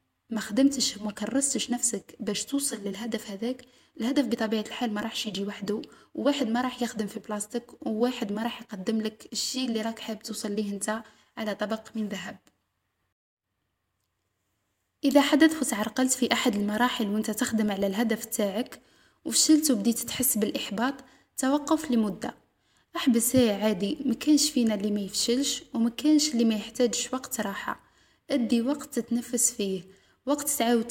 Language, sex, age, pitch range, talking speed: Arabic, female, 10-29, 215-265 Hz, 140 wpm